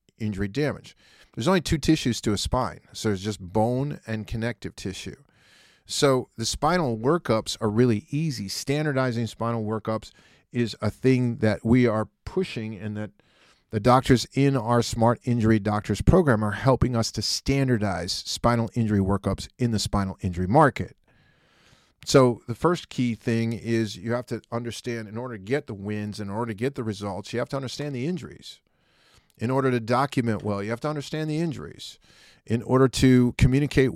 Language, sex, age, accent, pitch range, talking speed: English, male, 40-59, American, 110-135 Hz, 175 wpm